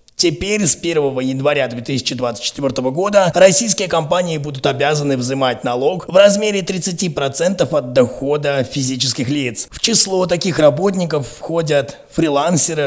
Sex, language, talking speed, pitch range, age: male, Russian, 115 wpm, 130-170 Hz, 20-39